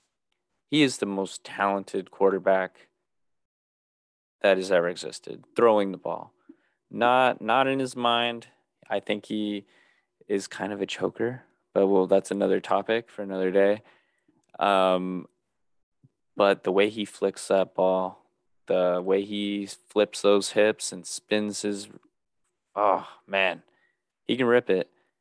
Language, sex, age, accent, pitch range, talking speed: English, male, 20-39, American, 95-115 Hz, 135 wpm